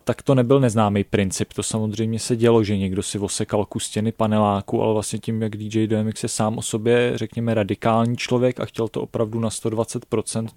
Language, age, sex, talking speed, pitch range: Czech, 20-39, male, 195 wpm, 110-120 Hz